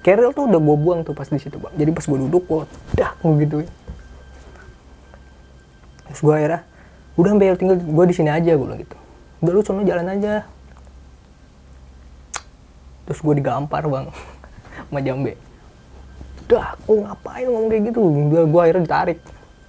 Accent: native